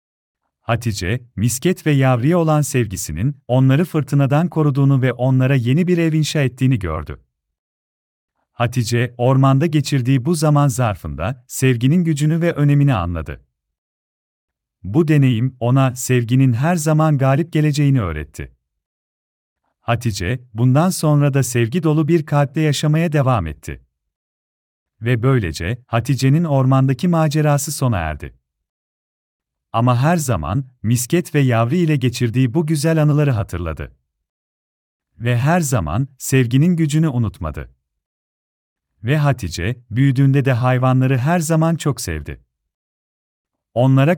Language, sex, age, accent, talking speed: Turkish, male, 40-59, native, 110 wpm